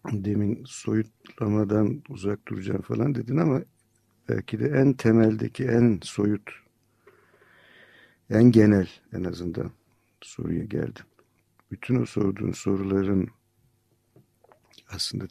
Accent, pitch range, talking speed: native, 95-120 Hz, 95 wpm